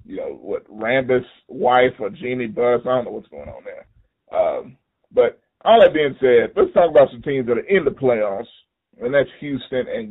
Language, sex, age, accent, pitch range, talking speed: English, male, 30-49, American, 120-170 Hz, 210 wpm